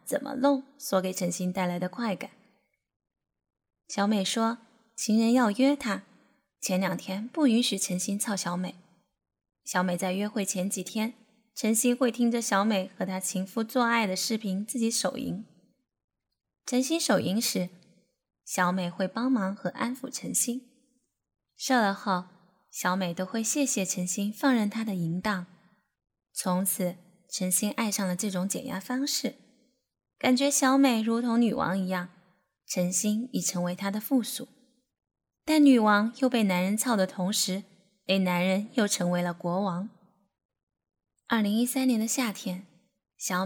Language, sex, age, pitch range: Chinese, female, 10-29, 185-245 Hz